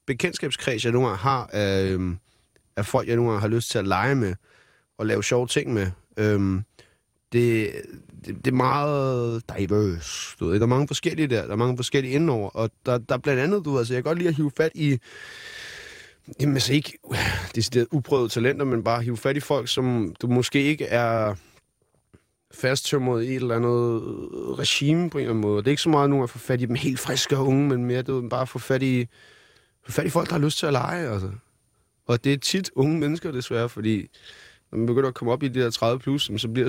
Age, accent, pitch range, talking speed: 30-49, native, 115-145 Hz, 225 wpm